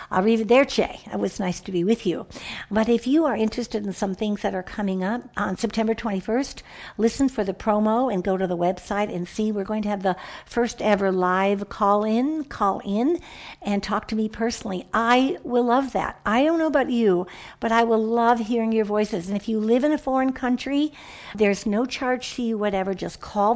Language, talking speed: English, 215 wpm